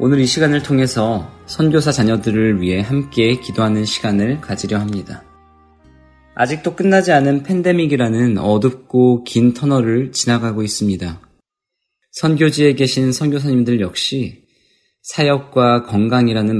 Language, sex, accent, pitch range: Korean, male, native, 105-140 Hz